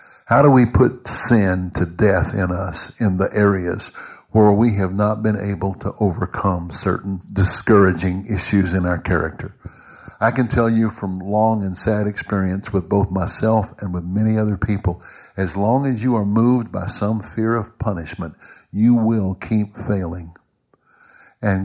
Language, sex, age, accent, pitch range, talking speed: English, male, 60-79, American, 95-115 Hz, 165 wpm